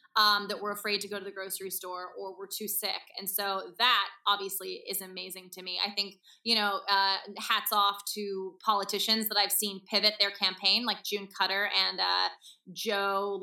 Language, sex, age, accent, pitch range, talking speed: English, female, 20-39, American, 195-215 Hz, 190 wpm